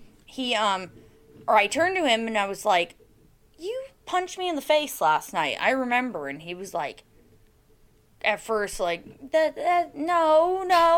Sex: female